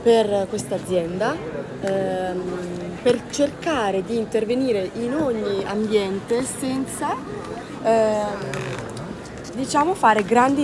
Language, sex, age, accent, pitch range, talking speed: Italian, female, 30-49, native, 185-225 Hz, 80 wpm